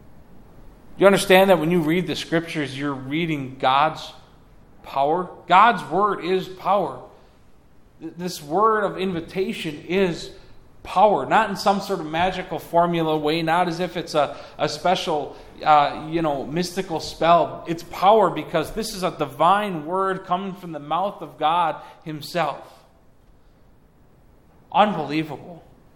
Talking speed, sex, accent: 135 wpm, male, American